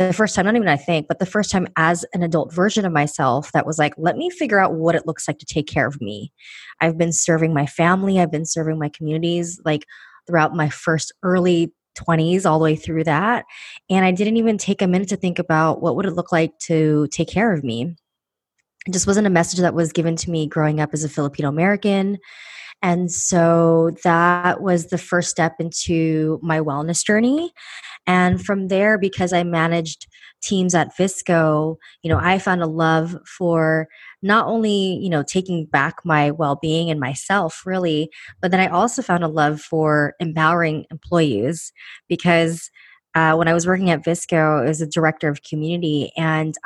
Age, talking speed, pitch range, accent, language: 20-39, 195 wpm, 155-185 Hz, American, English